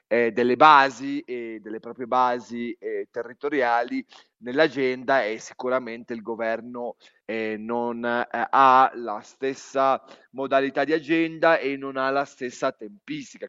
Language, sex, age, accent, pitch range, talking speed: Italian, male, 30-49, native, 120-150 Hz, 130 wpm